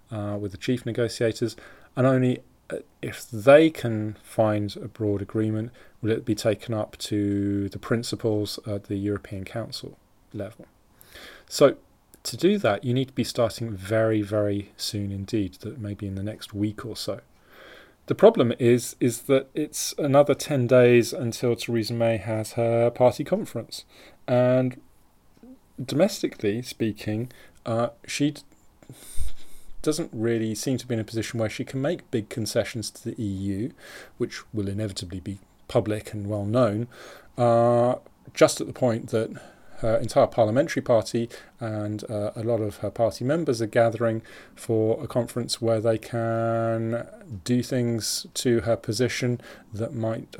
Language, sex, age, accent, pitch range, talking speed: English, male, 30-49, British, 105-125 Hz, 155 wpm